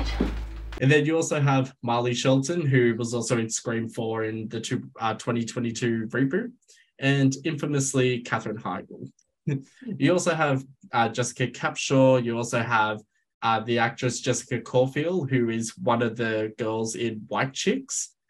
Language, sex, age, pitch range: English, male, 10-29, 115-140 Hz